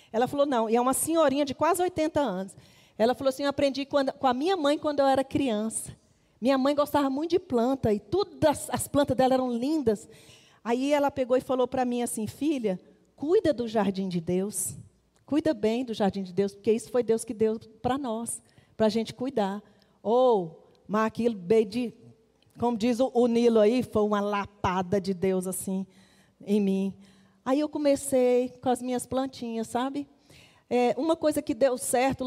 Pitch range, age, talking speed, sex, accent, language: 215-260 Hz, 40-59, 190 wpm, female, Brazilian, Portuguese